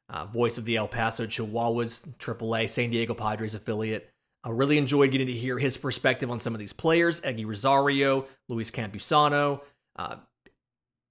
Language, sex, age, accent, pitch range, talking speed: English, male, 30-49, American, 120-150 Hz, 170 wpm